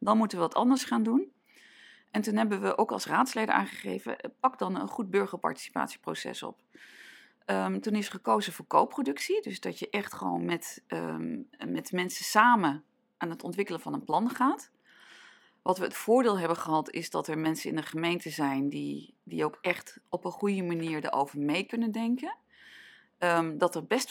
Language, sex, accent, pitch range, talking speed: Dutch, female, Dutch, 165-230 Hz, 175 wpm